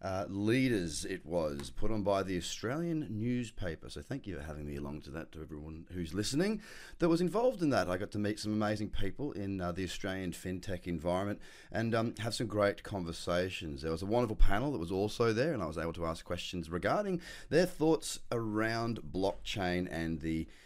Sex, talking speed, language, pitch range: male, 205 wpm, English, 90-120 Hz